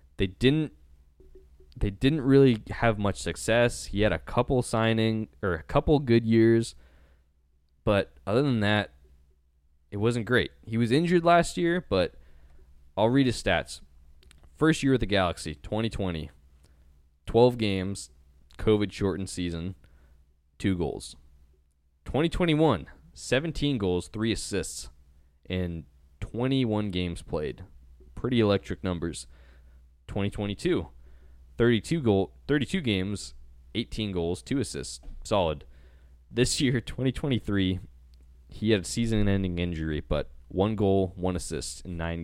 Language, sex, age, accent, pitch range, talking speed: English, male, 20-39, American, 70-110 Hz, 120 wpm